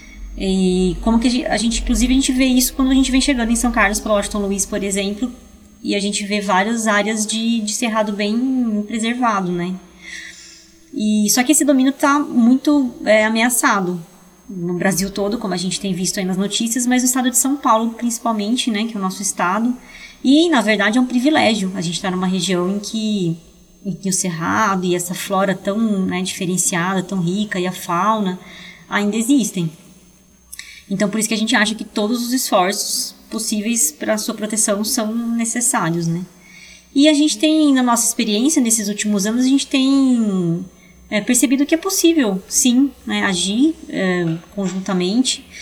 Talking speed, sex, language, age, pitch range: 185 wpm, female, Portuguese, 20-39, 190-245 Hz